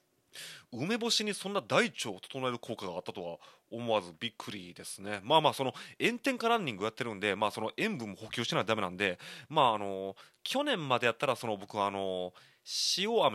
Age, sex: 30-49, male